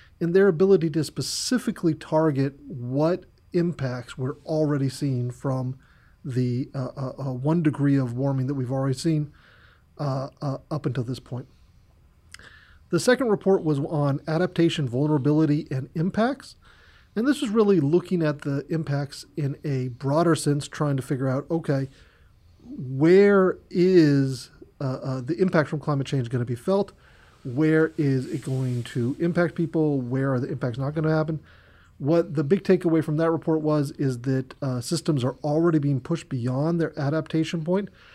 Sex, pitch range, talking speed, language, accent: male, 130-160 Hz, 165 wpm, English, American